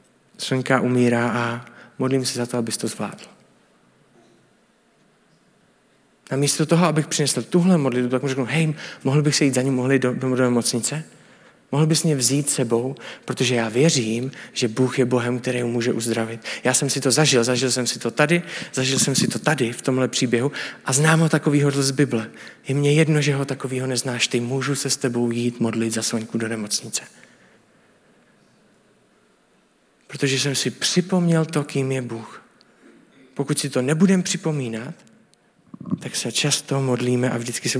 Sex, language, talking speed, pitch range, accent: male, Czech, 175 wpm, 120-145 Hz, native